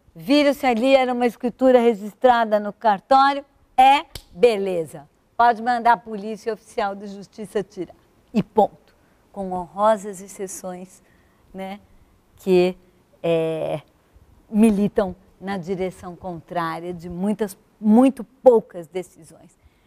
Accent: Brazilian